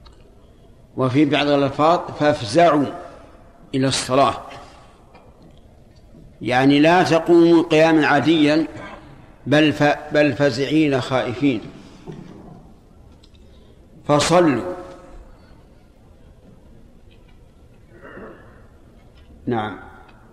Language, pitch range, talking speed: Arabic, 130-155 Hz, 50 wpm